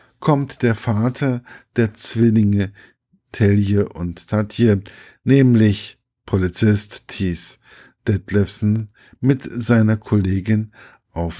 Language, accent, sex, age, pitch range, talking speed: German, German, male, 50-69, 100-125 Hz, 85 wpm